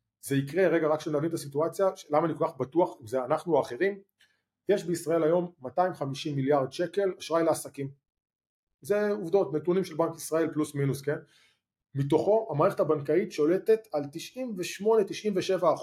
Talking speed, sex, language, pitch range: 150 wpm, male, Hebrew, 145-195 Hz